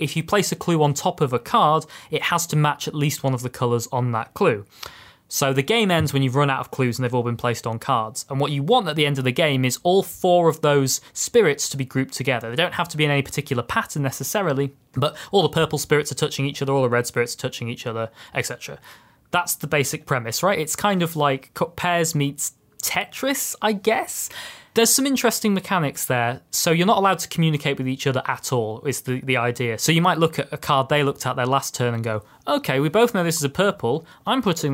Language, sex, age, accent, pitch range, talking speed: English, male, 20-39, British, 130-175 Hz, 255 wpm